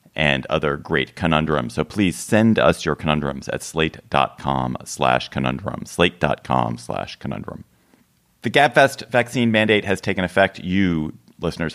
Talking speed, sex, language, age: 135 wpm, male, English, 40-59